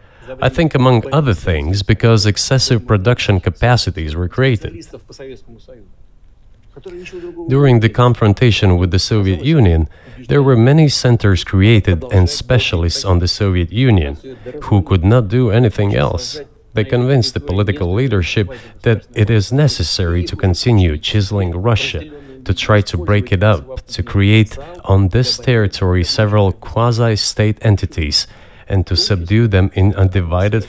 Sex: male